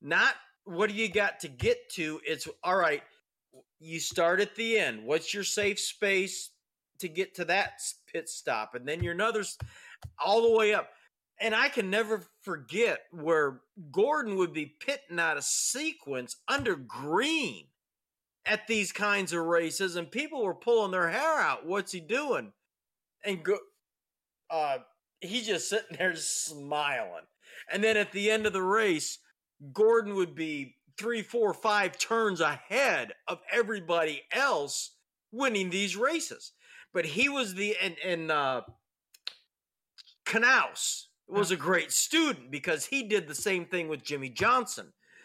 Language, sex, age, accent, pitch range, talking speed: English, male, 40-59, American, 160-220 Hz, 150 wpm